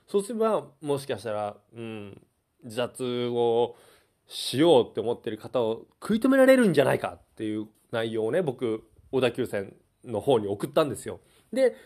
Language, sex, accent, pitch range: Japanese, male, native, 115-190 Hz